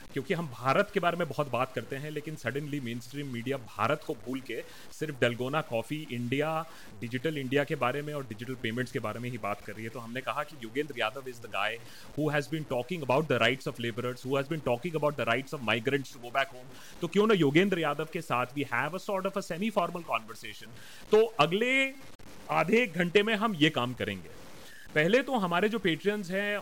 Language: Hindi